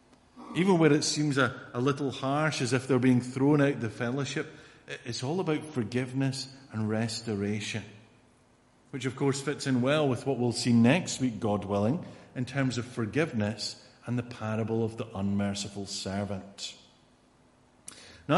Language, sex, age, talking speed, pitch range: English, male, 50-69, 155 wpm, 115-145 Hz